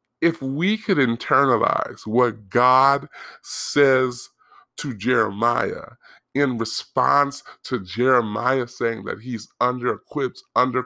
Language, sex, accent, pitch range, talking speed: English, female, American, 110-130 Hz, 105 wpm